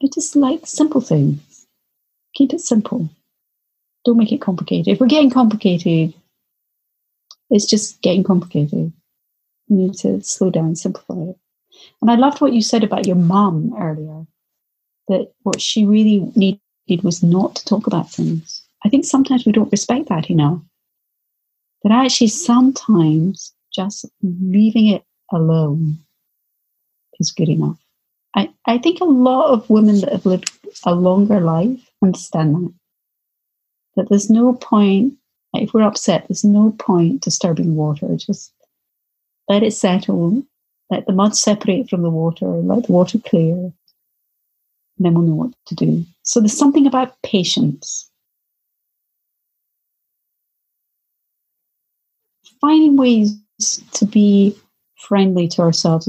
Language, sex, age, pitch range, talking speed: English, female, 40-59, 175-235 Hz, 135 wpm